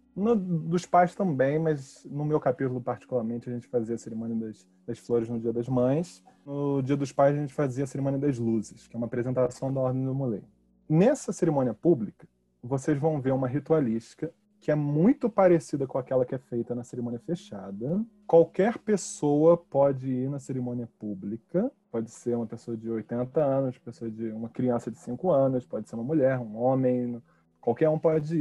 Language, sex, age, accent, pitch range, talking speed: Portuguese, male, 20-39, Brazilian, 120-155 Hz, 190 wpm